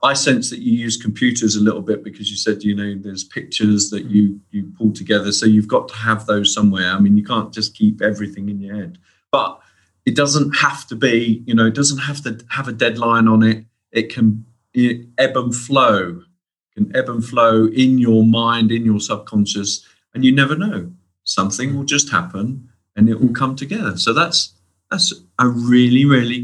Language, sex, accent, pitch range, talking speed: English, male, British, 105-140 Hz, 205 wpm